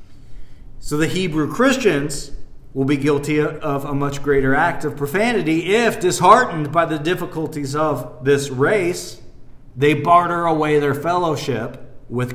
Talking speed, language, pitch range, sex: 135 wpm, English, 125-175 Hz, male